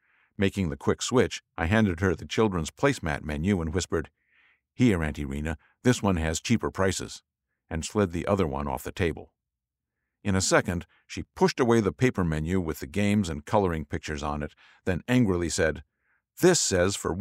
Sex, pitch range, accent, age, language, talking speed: male, 80-115 Hz, American, 50-69, English, 180 wpm